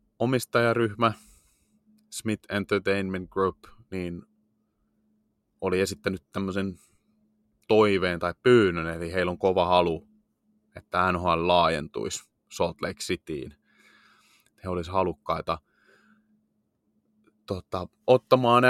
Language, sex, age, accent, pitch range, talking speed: Finnish, male, 30-49, native, 90-110 Hz, 85 wpm